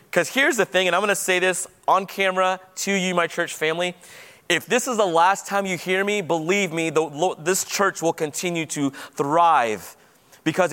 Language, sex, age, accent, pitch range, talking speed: English, male, 30-49, American, 180-225 Hz, 195 wpm